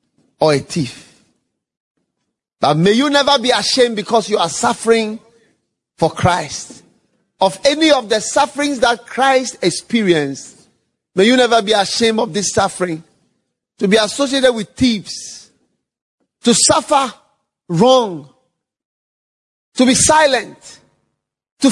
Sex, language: male, English